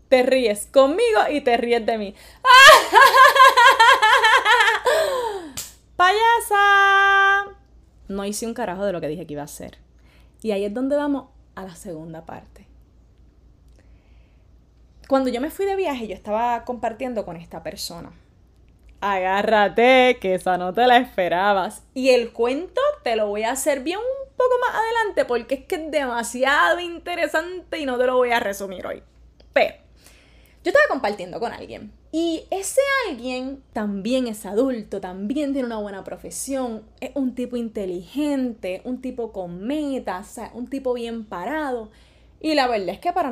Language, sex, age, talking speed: Spanish, female, 20-39, 155 wpm